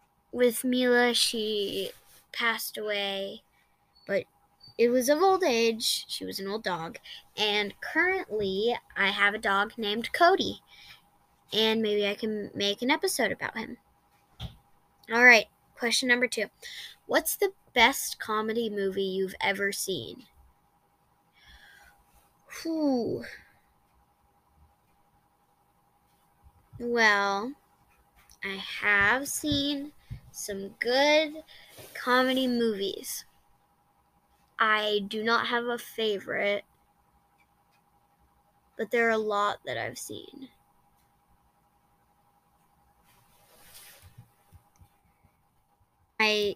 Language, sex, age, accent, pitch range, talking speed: English, female, 10-29, American, 200-250 Hz, 90 wpm